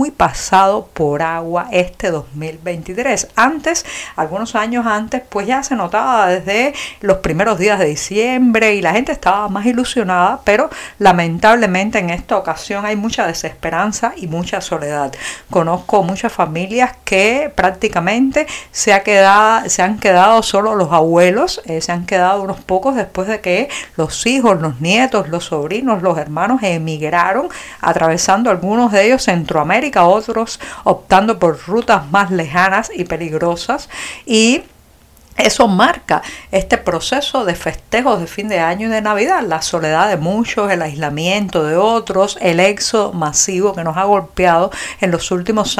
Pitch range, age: 175-225 Hz, 50-69